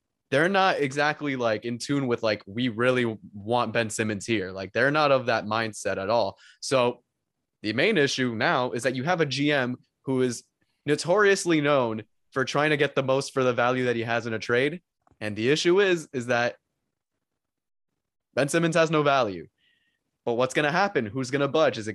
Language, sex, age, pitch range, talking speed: English, male, 20-39, 120-155 Hz, 200 wpm